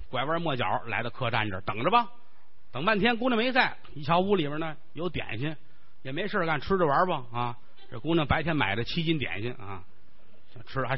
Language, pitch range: Chinese, 120-160 Hz